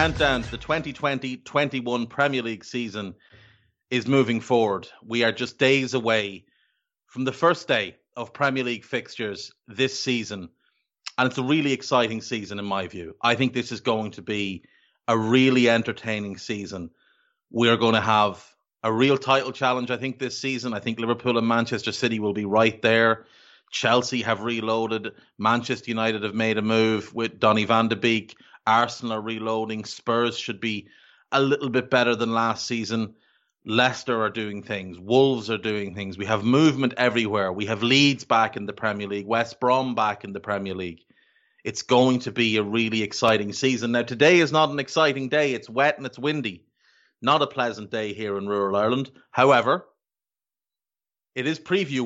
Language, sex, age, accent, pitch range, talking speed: English, male, 30-49, Irish, 110-130 Hz, 175 wpm